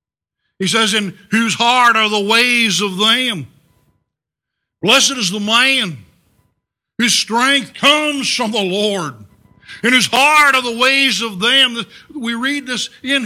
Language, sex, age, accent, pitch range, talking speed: English, male, 60-79, American, 170-240 Hz, 145 wpm